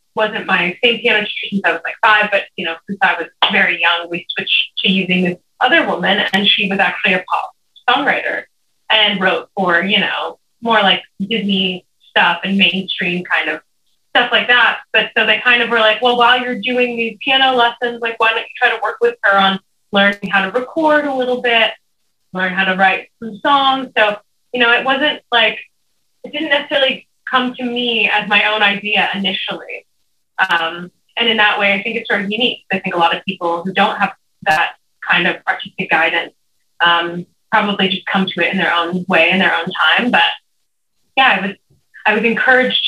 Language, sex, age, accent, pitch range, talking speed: English, female, 20-39, American, 180-230 Hz, 205 wpm